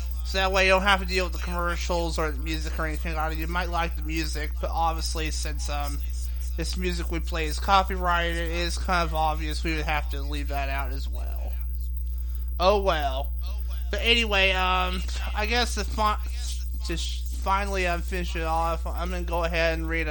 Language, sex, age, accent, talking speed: English, male, 30-49, American, 190 wpm